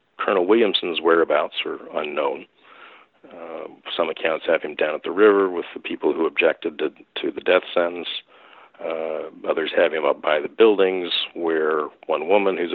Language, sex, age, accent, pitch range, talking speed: English, male, 50-69, American, 330-445 Hz, 170 wpm